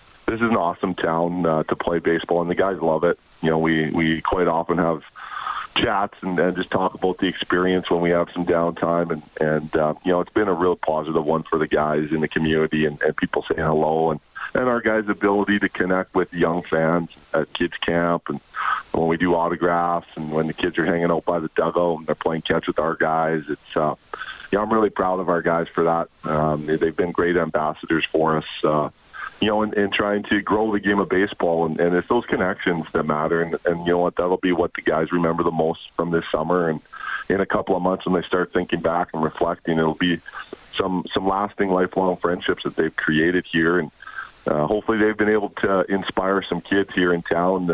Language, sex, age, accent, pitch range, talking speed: English, male, 40-59, American, 80-95 Hz, 230 wpm